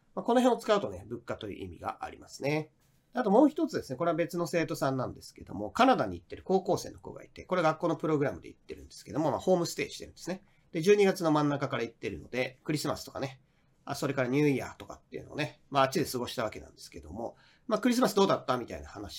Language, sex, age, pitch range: Japanese, male, 40-59, 135-195 Hz